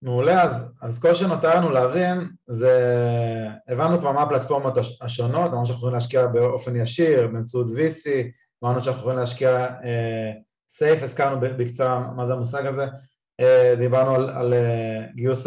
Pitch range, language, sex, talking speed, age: 120-140 Hz, Hebrew, male, 145 wpm, 20-39